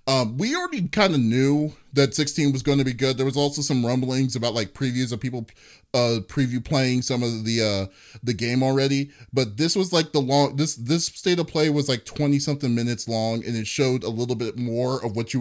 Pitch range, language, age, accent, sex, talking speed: 110-140 Hz, English, 20-39, American, male, 235 wpm